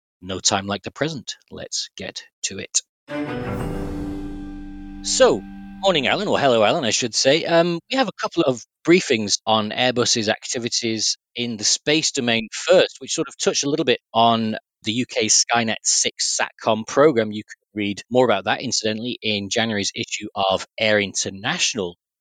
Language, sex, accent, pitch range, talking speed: English, male, British, 105-135 Hz, 160 wpm